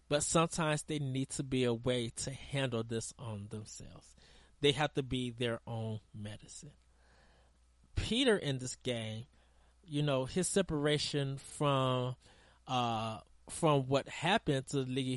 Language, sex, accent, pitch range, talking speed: English, male, American, 110-145 Hz, 140 wpm